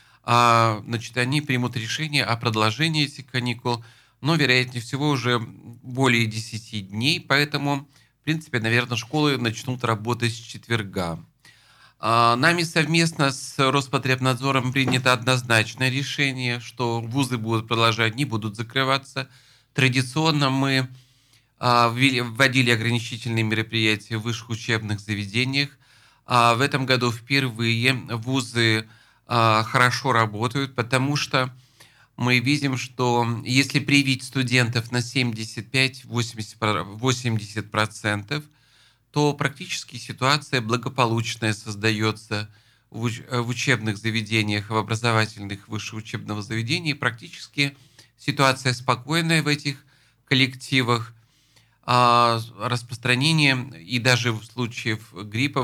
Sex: male